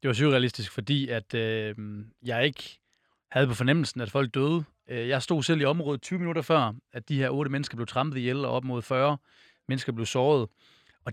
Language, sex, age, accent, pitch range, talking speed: Danish, male, 30-49, native, 120-155 Hz, 205 wpm